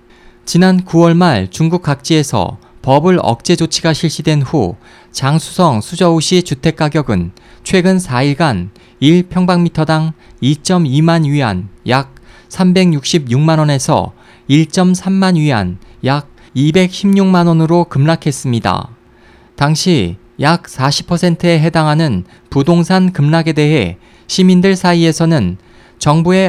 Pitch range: 120-175 Hz